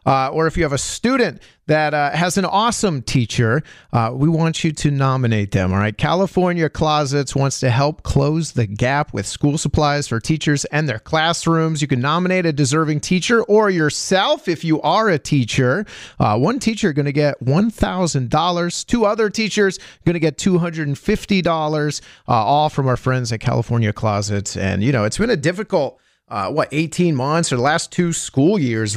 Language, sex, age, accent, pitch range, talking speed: English, male, 40-59, American, 125-170 Hz, 200 wpm